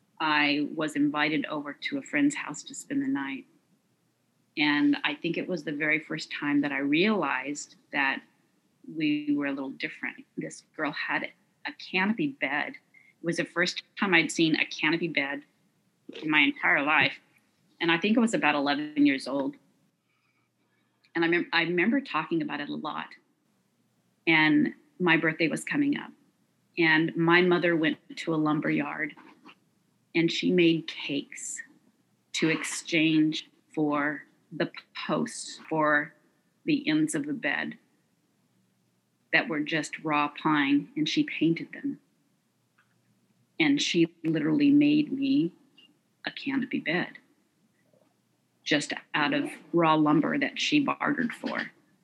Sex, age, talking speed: female, 40-59, 140 wpm